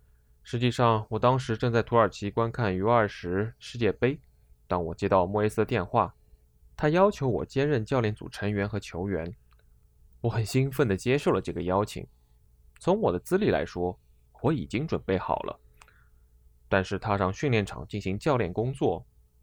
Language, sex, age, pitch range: Chinese, male, 20-39, 70-115 Hz